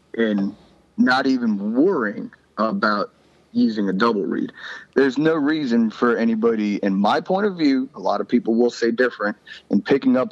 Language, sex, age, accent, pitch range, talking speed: English, male, 30-49, American, 110-140 Hz, 170 wpm